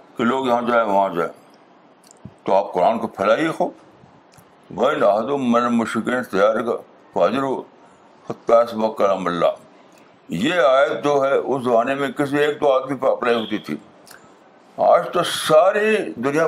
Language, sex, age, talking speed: Urdu, male, 60-79, 115 wpm